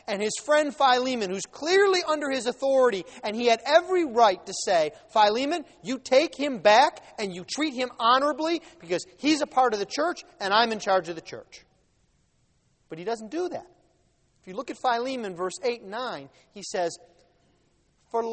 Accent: American